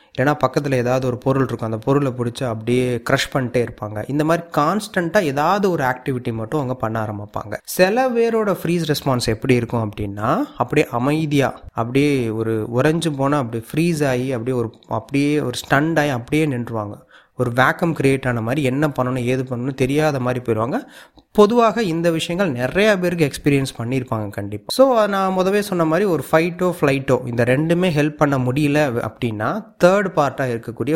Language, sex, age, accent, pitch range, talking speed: Tamil, male, 30-49, native, 120-160 Hz, 155 wpm